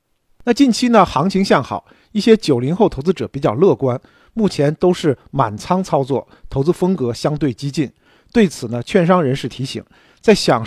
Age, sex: 50-69, male